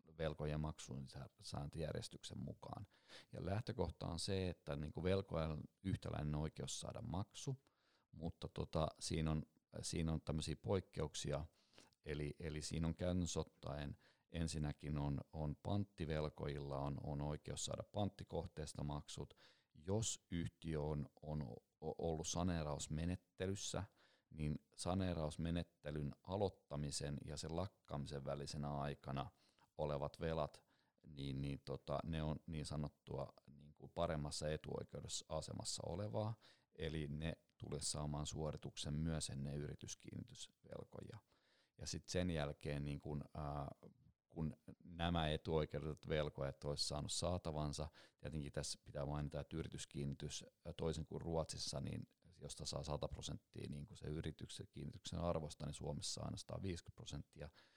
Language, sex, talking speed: Finnish, male, 115 wpm